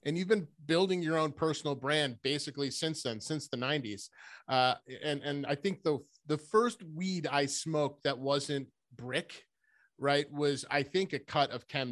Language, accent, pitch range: English, American, 125-165 Hz